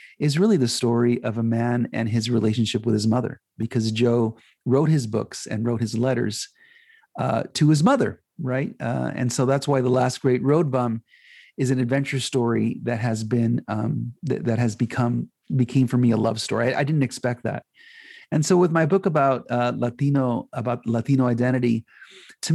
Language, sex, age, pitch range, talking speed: English, male, 40-59, 115-135 Hz, 190 wpm